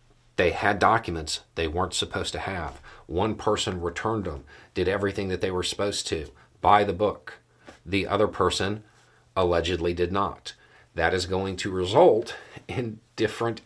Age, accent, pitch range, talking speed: 40-59, American, 80-100 Hz, 155 wpm